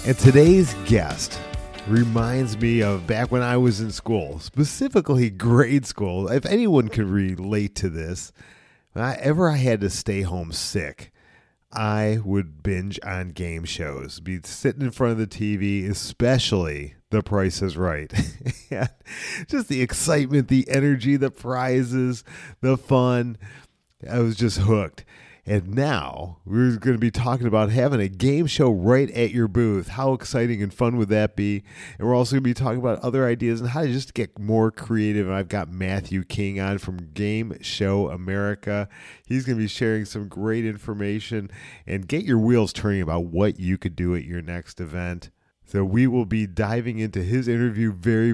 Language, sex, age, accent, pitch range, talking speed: English, male, 40-59, American, 100-125 Hz, 175 wpm